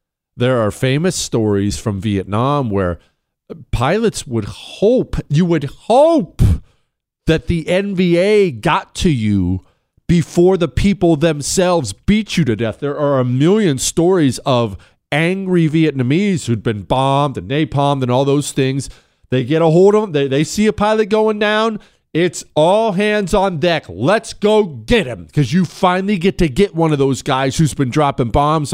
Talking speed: 165 wpm